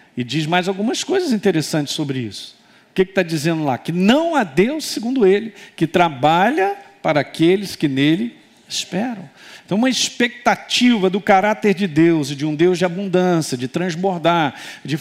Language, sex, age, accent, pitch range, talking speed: Portuguese, male, 50-69, Brazilian, 165-230 Hz, 165 wpm